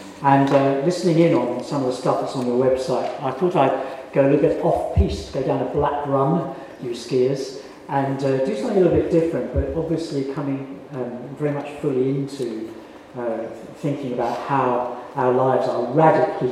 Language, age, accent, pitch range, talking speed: English, 50-69, British, 135-165 Hz, 190 wpm